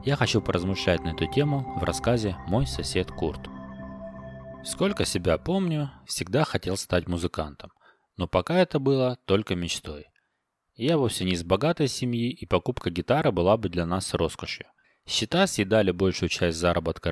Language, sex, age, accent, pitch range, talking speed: Russian, male, 20-39, native, 85-125 Hz, 150 wpm